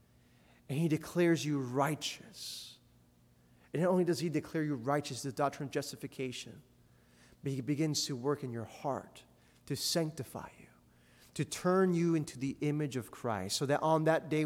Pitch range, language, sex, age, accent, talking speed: 120-155 Hz, English, male, 30-49, American, 170 wpm